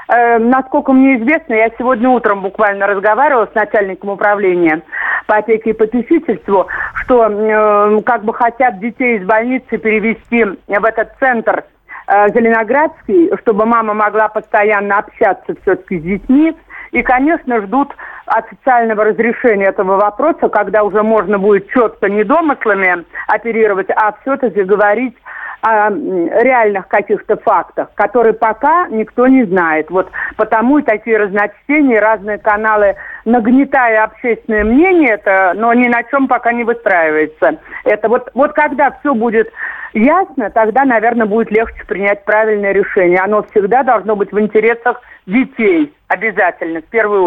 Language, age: Russian, 50-69